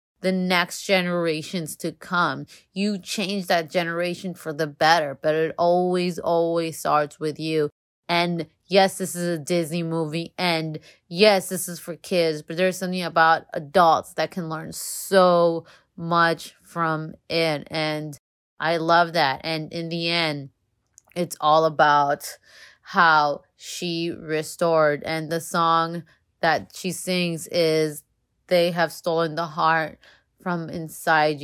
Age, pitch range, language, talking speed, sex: 20-39, 155-180 Hz, English, 135 wpm, female